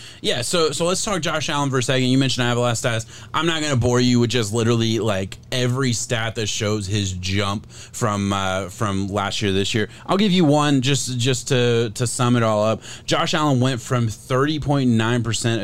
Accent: American